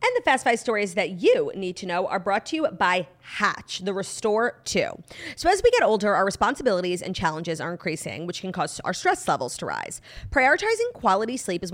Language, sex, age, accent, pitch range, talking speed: English, female, 30-49, American, 185-260 Hz, 215 wpm